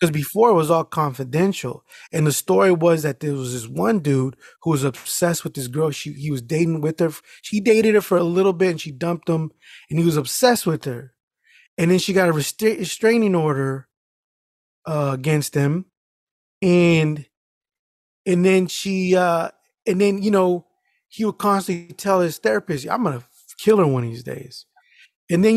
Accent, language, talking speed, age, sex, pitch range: American, English, 190 wpm, 20-39, male, 150-205 Hz